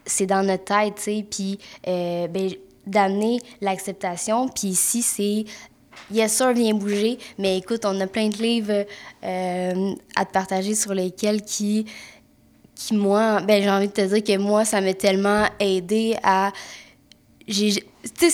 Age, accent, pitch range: 20-39, Canadian, 205-250 Hz